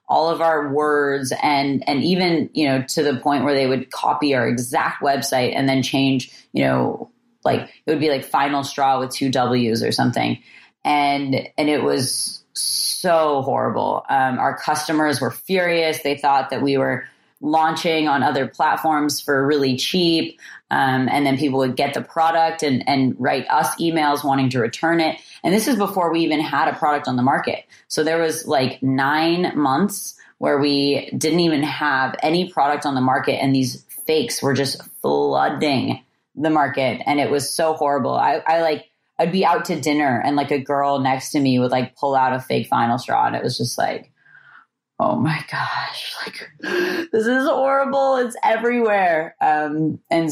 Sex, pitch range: female, 135-160 Hz